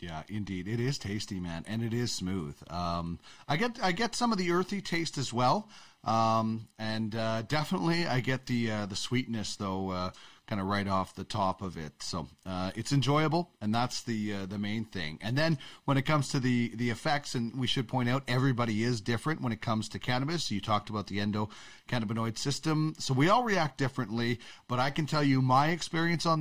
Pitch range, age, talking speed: 105-140 Hz, 40-59, 215 wpm